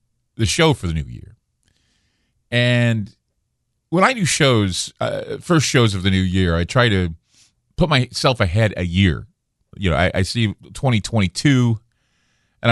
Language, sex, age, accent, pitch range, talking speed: English, male, 40-59, American, 85-115 Hz, 155 wpm